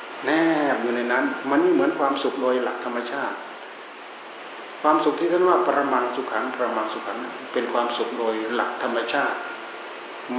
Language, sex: Thai, male